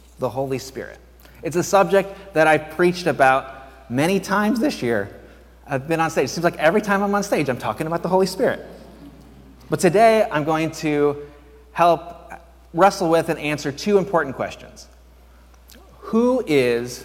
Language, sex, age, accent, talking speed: English, male, 30-49, American, 165 wpm